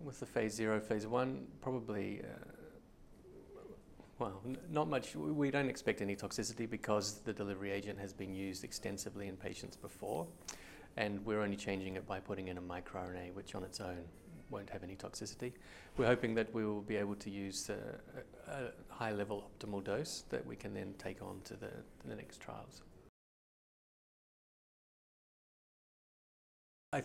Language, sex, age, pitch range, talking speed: English, male, 30-49, 95-115 Hz, 160 wpm